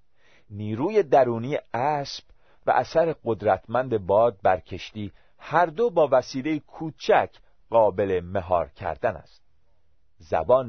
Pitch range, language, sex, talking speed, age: 95-140 Hz, Persian, male, 100 wpm, 40-59